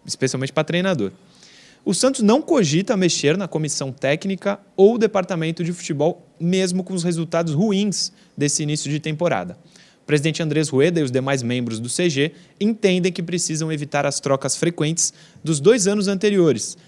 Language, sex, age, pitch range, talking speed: Portuguese, male, 20-39, 135-180 Hz, 160 wpm